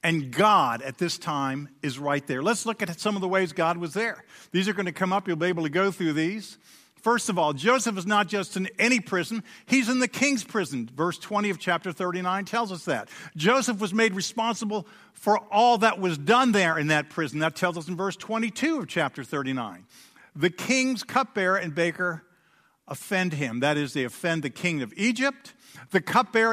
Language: English